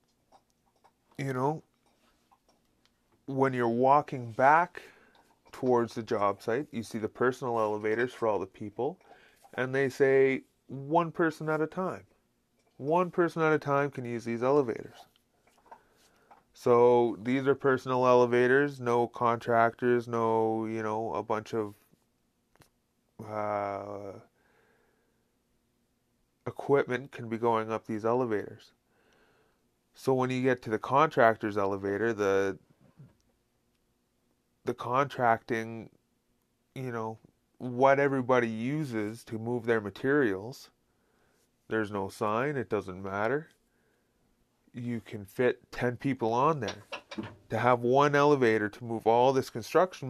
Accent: American